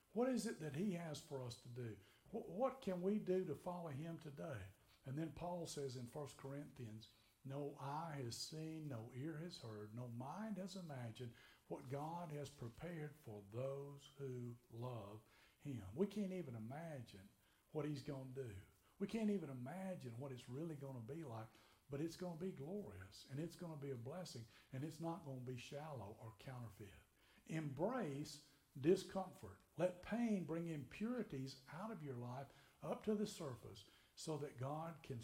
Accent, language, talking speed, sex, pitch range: American, English, 180 wpm, male, 120-165 Hz